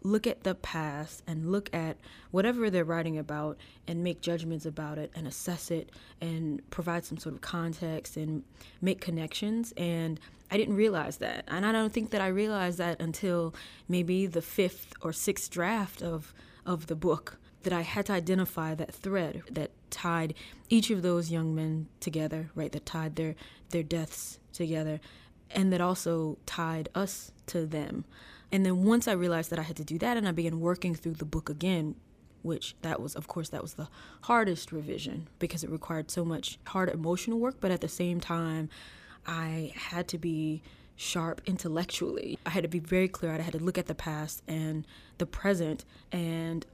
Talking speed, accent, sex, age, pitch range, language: 185 wpm, American, female, 20-39, 160-185 Hz, English